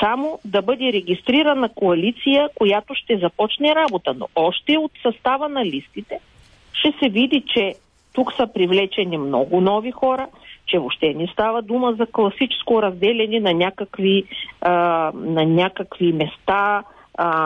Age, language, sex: 40-59, Bulgarian, female